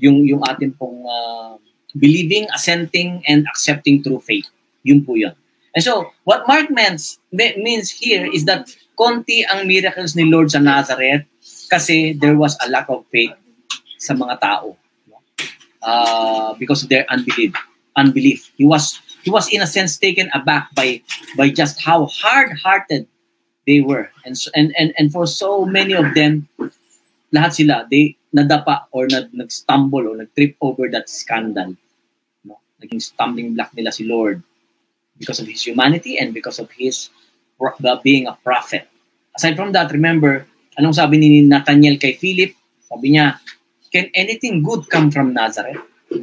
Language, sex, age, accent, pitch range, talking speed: English, male, 20-39, Filipino, 135-185 Hz, 155 wpm